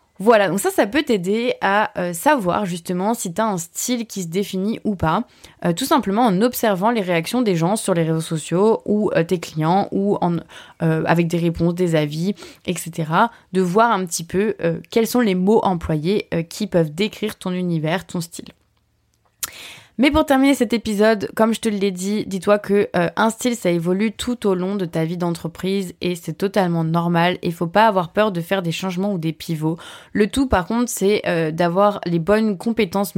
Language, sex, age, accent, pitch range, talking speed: French, female, 20-39, French, 170-210 Hz, 205 wpm